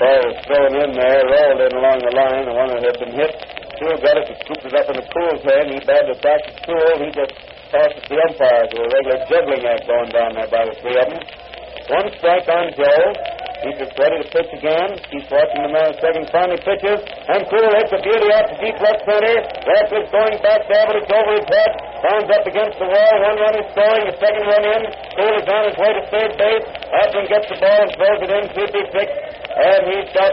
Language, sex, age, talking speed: English, male, 60-79, 240 wpm